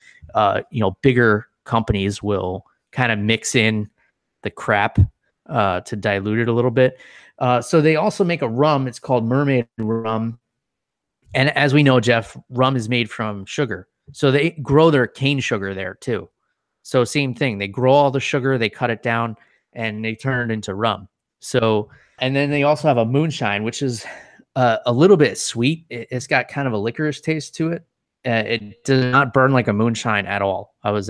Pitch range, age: 105-130 Hz, 20-39